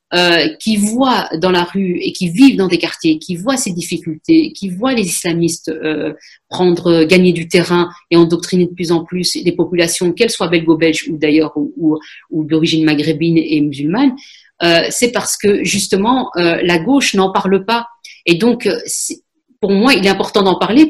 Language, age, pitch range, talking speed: French, 40-59, 170-235 Hz, 190 wpm